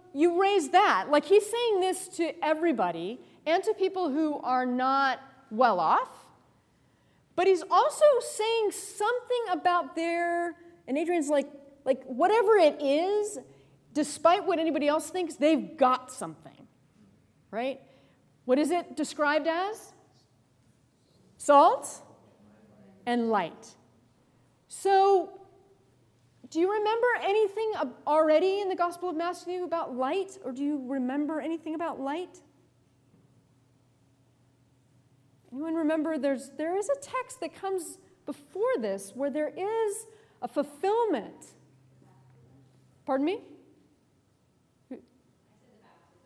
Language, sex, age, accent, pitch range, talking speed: English, female, 40-59, American, 250-365 Hz, 115 wpm